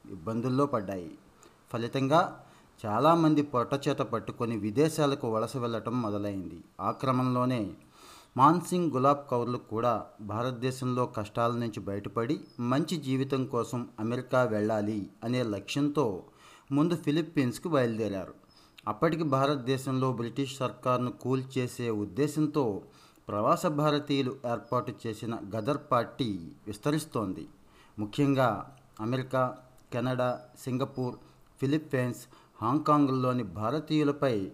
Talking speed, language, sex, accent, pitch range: 90 wpm, Telugu, male, native, 115-145 Hz